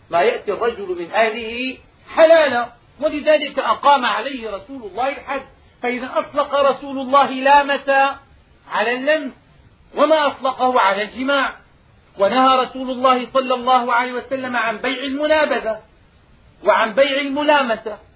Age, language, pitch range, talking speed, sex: 40-59, Arabic, 240-285 Hz, 120 wpm, male